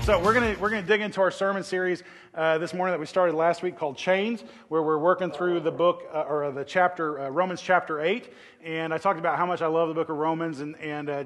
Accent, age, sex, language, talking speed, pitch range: American, 20-39, male, English, 265 wpm, 150-175 Hz